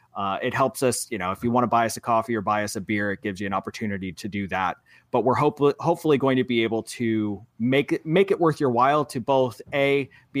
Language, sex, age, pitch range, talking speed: English, male, 30-49, 110-135 Hz, 270 wpm